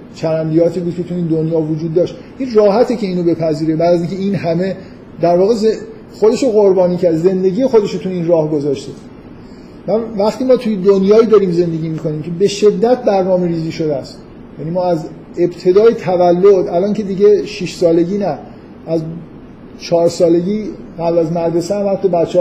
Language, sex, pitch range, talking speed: Persian, male, 165-195 Hz, 160 wpm